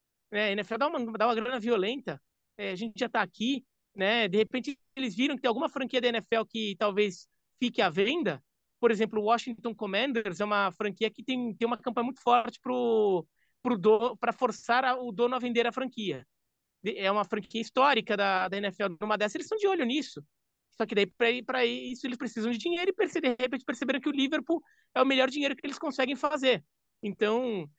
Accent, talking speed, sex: Brazilian, 200 wpm, male